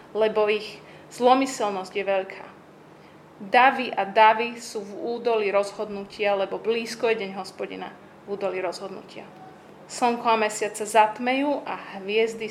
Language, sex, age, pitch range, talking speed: Slovak, female, 30-49, 200-230 Hz, 130 wpm